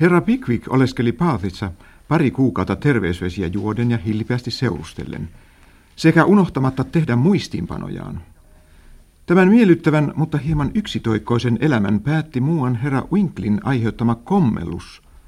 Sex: male